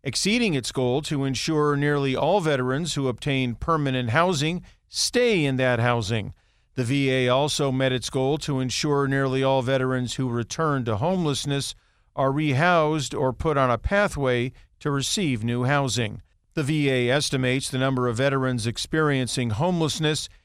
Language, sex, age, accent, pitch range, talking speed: English, male, 50-69, American, 125-155 Hz, 150 wpm